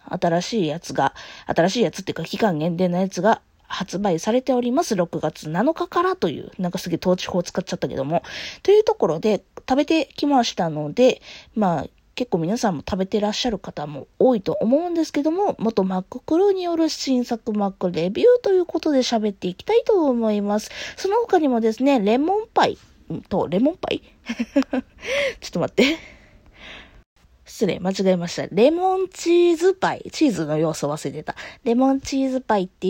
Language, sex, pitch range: Japanese, female, 190-310 Hz